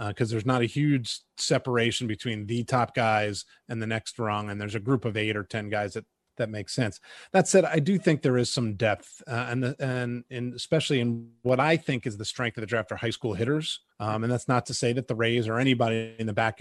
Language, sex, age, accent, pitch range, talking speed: English, male, 30-49, American, 110-135 Hz, 255 wpm